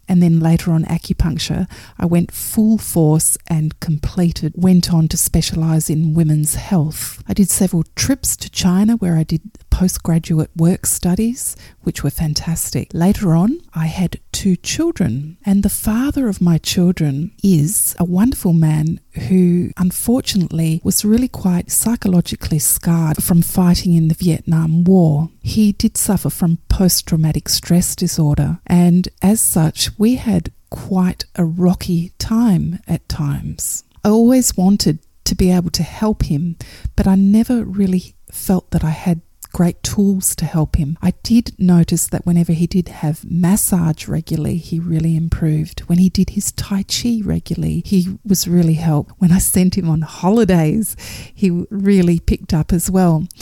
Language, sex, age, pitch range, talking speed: English, female, 30-49, 160-190 Hz, 155 wpm